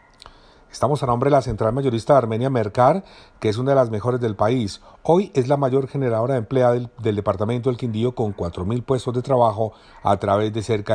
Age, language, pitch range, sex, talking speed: 40-59, Spanish, 110-140 Hz, male, 215 wpm